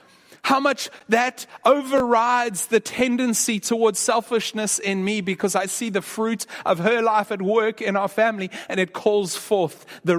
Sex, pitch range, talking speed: male, 140-195 Hz, 165 wpm